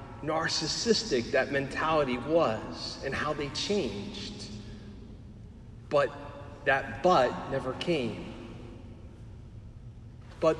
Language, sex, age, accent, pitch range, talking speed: English, male, 40-59, American, 115-160 Hz, 80 wpm